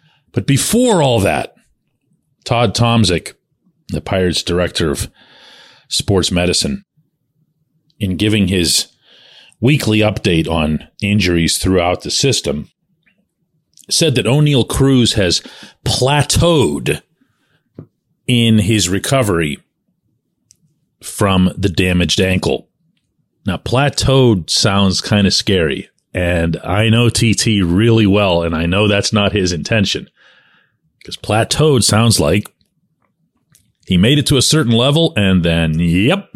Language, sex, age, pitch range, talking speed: English, male, 40-59, 95-135 Hz, 110 wpm